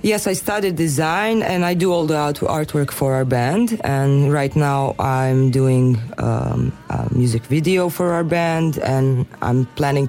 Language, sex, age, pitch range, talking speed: French, female, 20-39, 140-190 Hz, 165 wpm